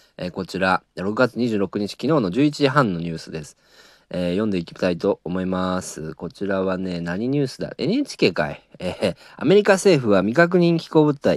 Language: Japanese